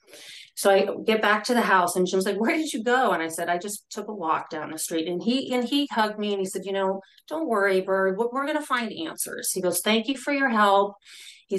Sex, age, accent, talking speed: female, 30-49, American, 270 wpm